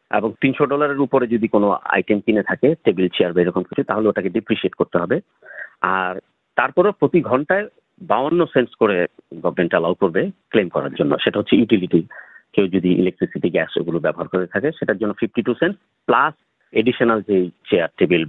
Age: 50-69